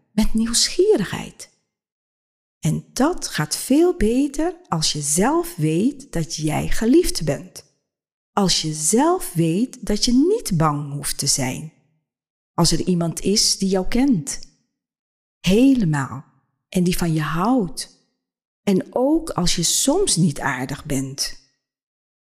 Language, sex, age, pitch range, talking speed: Dutch, female, 40-59, 150-250 Hz, 125 wpm